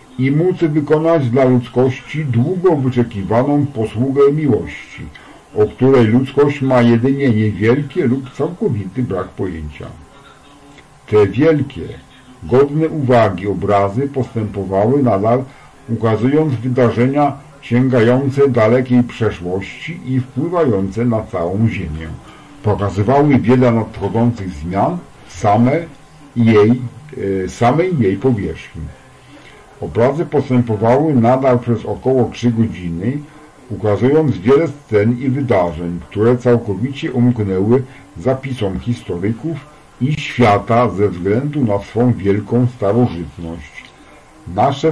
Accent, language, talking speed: Polish, English, 90 wpm